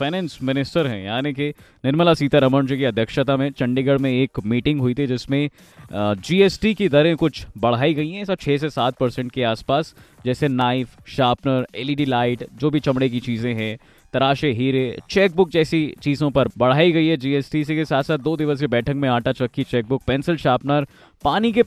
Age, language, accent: 20-39, Hindi, native